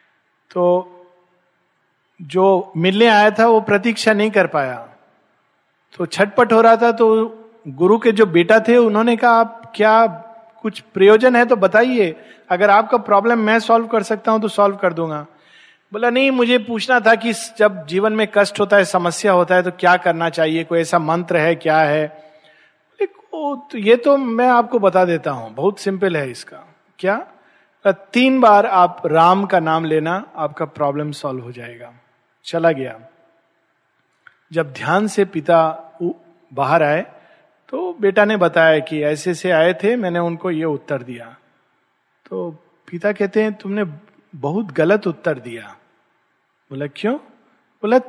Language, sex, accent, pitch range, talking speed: Hindi, male, native, 165-225 Hz, 160 wpm